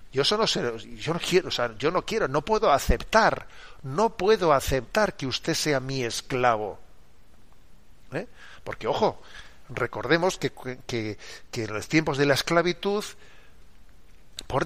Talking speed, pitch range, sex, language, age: 145 wpm, 120-150 Hz, male, Spanish, 50-69